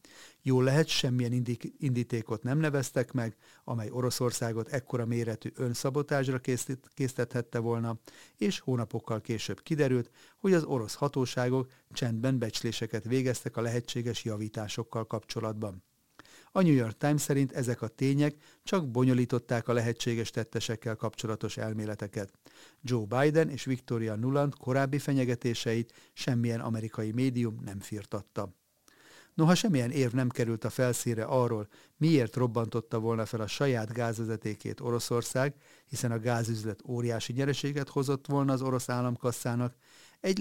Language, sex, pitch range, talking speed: Hungarian, male, 115-135 Hz, 125 wpm